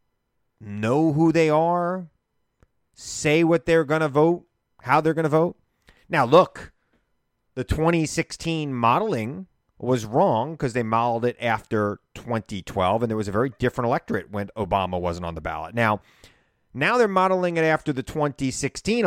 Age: 30-49